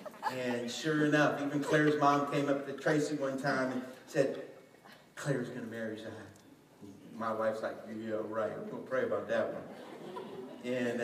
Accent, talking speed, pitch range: American, 165 wpm, 145-190 Hz